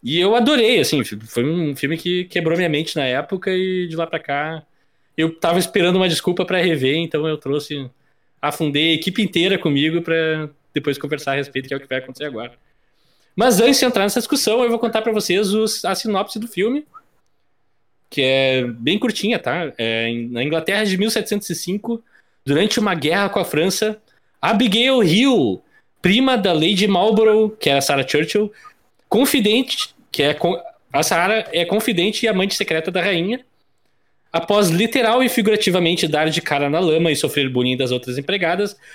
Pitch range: 150-215 Hz